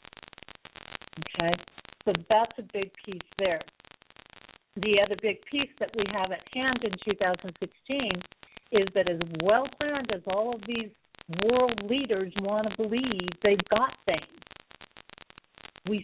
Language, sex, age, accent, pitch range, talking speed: English, female, 50-69, American, 185-240 Hz, 130 wpm